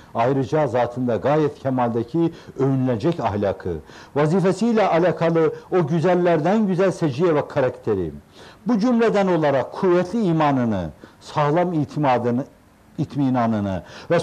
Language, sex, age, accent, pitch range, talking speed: Turkish, male, 60-79, native, 130-195 Hz, 95 wpm